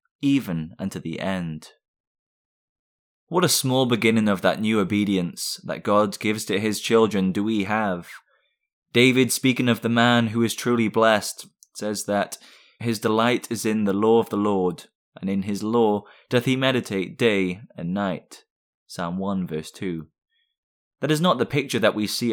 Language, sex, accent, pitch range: English, male, British, 100-120 Hz